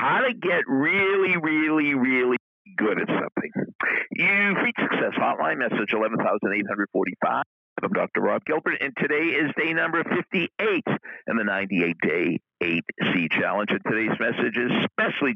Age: 50-69